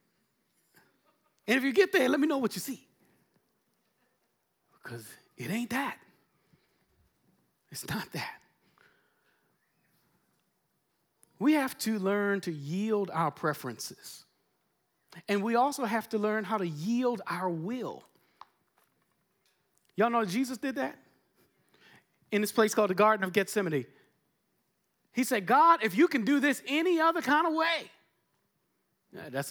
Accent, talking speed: American, 130 wpm